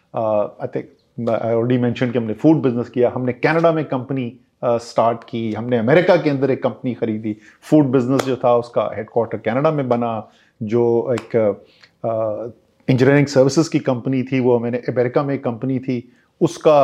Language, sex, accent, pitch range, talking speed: English, male, Indian, 120-145 Hz, 170 wpm